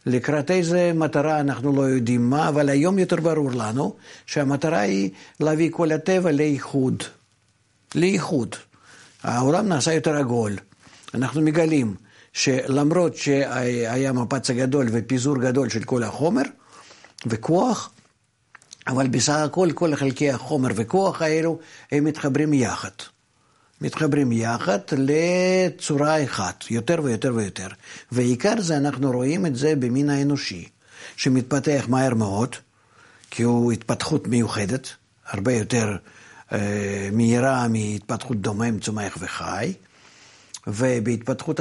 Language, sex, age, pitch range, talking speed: Hebrew, male, 60-79, 120-155 Hz, 110 wpm